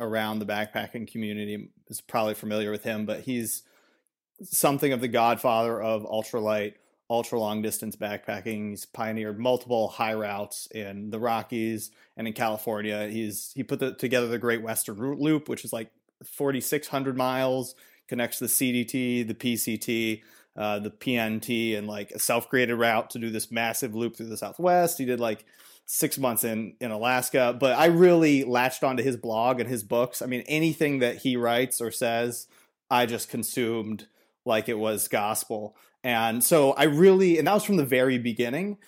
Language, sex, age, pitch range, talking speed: English, male, 30-49, 110-130 Hz, 175 wpm